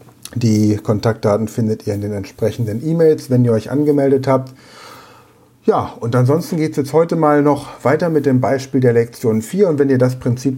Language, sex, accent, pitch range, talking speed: German, male, German, 115-140 Hz, 195 wpm